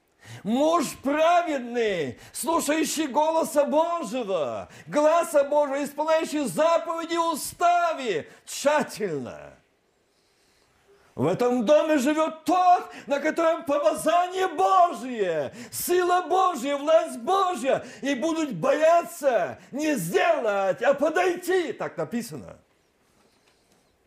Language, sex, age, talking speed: Russian, male, 50-69, 85 wpm